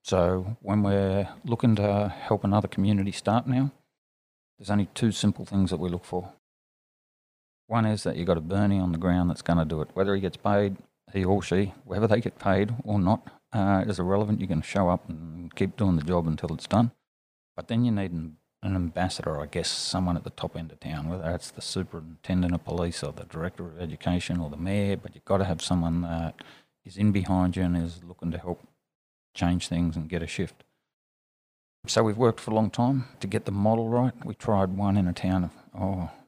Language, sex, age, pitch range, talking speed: English, male, 40-59, 85-100 Hz, 225 wpm